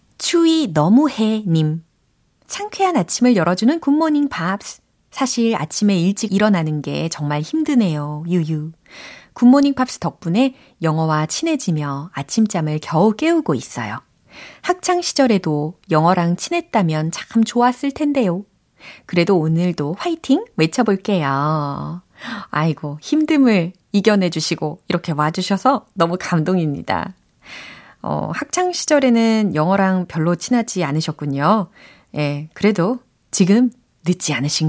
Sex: female